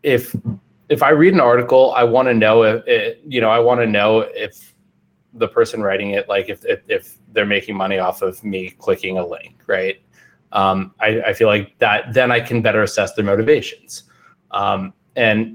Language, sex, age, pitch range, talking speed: English, male, 20-39, 105-140 Hz, 205 wpm